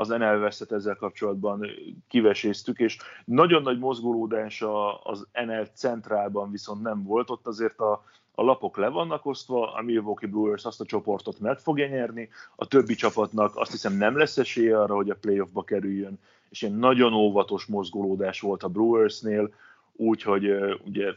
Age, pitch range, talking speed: 30-49, 100-110 Hz, 155 wpm